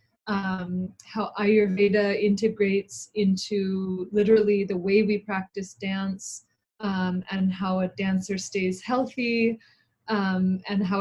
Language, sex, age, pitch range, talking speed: English, female, 20-39, 190-210 Hz, 115 wpm